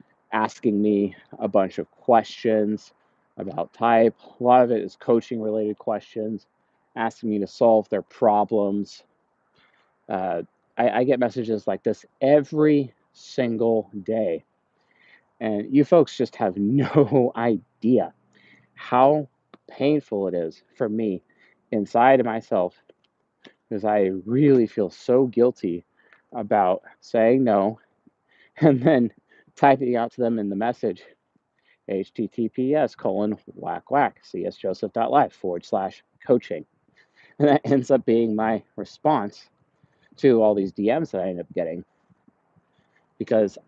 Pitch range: 105-130 Hz